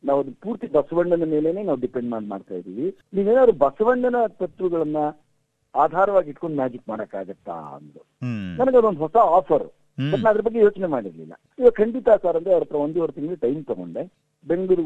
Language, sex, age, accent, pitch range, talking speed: Kannada, male, 50-69, native, 130-190 Hz, 145 wpm